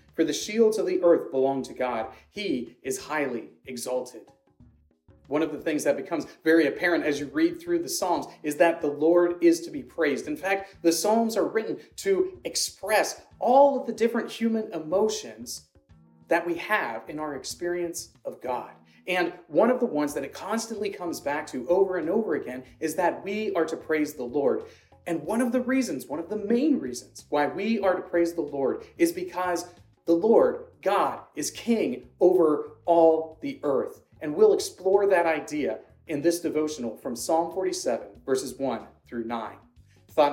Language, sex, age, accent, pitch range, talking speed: English, male, 30-49, American, 140-220 Hz, 185 wpm